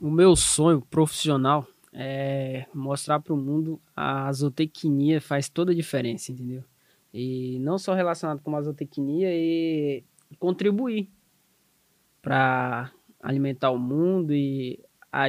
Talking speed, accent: 120 wpm, Brazilian